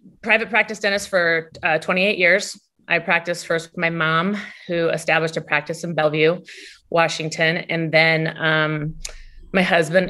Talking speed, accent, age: 150 wpm, American, 30-49